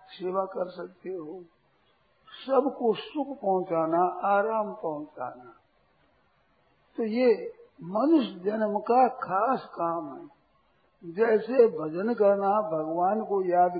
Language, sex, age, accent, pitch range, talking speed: Hindi, male, 60-79, native, 180-235 Hz, 105 wpm